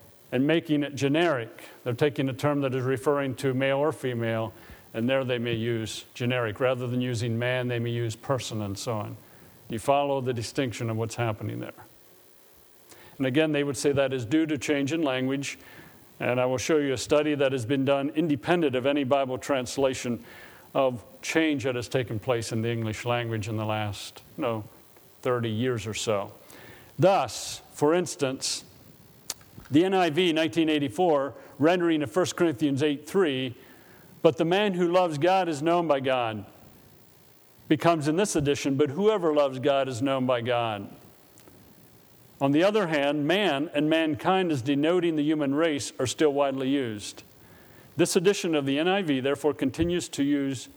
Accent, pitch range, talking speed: American, 120-150 Hz, 170 wpm